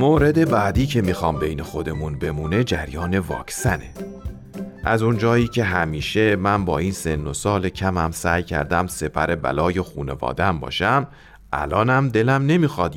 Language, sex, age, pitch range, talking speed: Persian, male, 40-59, 80-120 Hz, 135 wpm